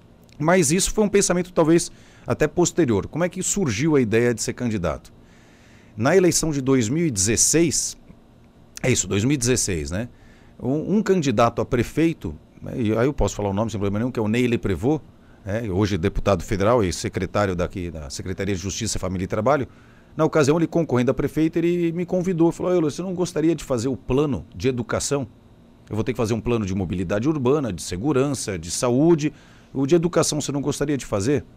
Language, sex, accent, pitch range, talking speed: Portuguese, male, Brazilian, 105-155 Hz, 190 wpm